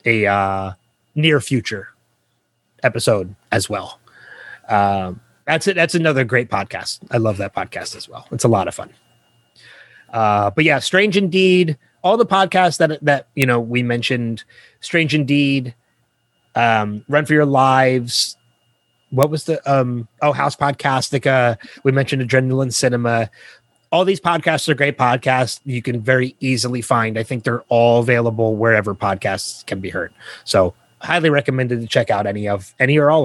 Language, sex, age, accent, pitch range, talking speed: English, male, 30-49, American, 120-155 Hz, 160 wpm